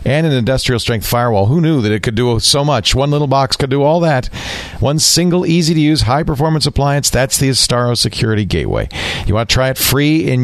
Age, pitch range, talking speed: 50-69, 90-130 Hz, 230 wpm